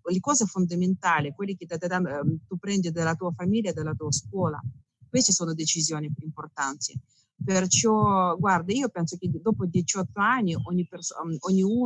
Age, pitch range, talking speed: 40-59, 160-190 Hz, 145 wpm